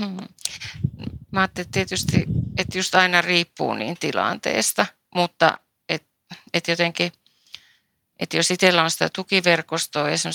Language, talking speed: Finnish, 130 wpm